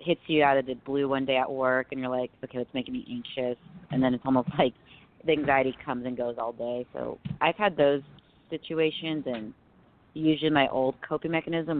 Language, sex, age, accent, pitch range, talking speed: English, female, 30-49, American, 125-140 Hz, 210 wpm